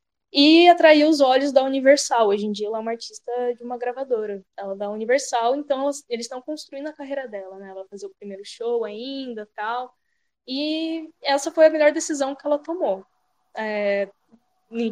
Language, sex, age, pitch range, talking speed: Portuguese, female, 10-29, 220-280 Hz, 185 wpm